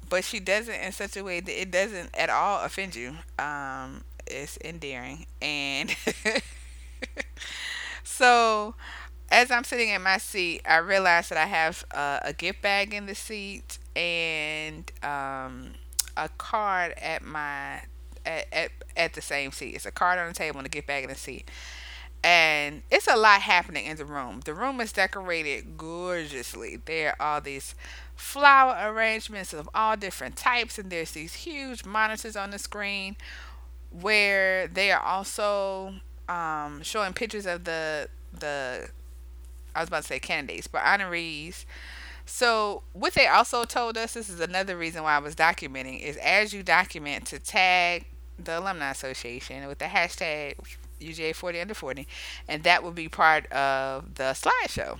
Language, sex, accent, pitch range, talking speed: English, female, American, 130-195 Hz, 165 wpm